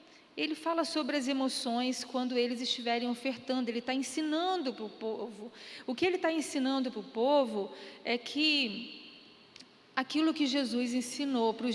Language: Portuguese